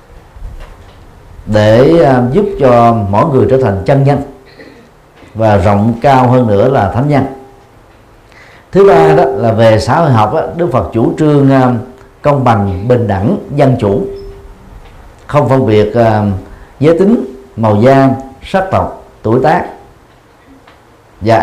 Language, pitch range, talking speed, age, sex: Vietnamese, 105-135 Hz, 145 wpm, 50-69, male